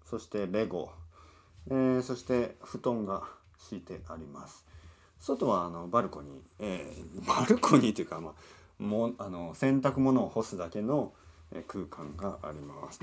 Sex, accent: male, native